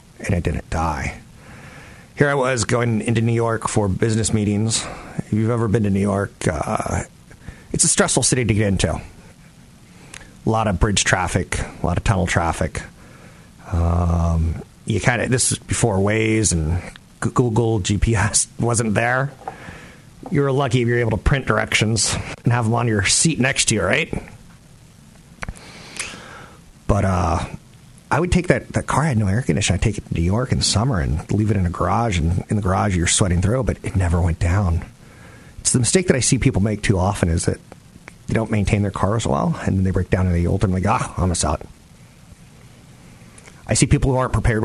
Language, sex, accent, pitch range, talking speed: English, male, American, 90-120 Hz, 195 wpm